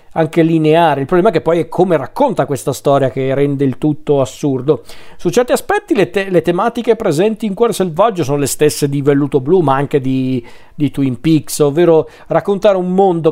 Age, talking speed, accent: 40-59, 200 wpm, native